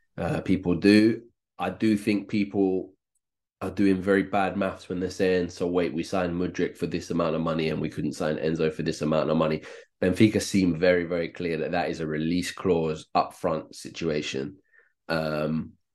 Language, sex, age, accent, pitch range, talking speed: English, male, 20-39, British, 85-100 Hz, 185 wpm